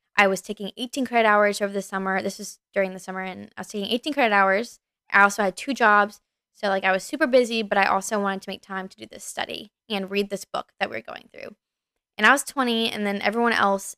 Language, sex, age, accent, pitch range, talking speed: English, female, 10-29, American, 195-220 Hz, 260 wpm